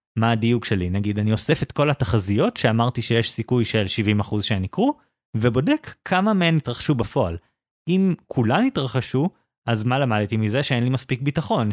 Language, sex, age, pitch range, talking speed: Hebrew, male, 20-39, 115-150 Hz, 165 wpm